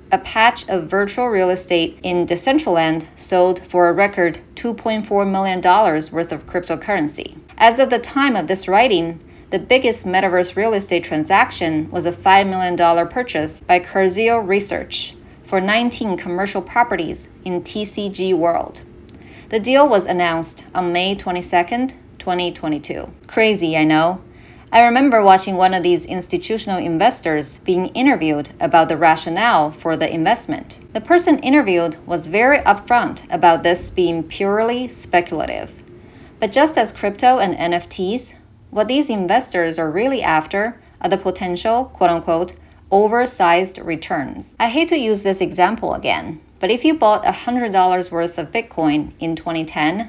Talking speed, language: 145 wpm, English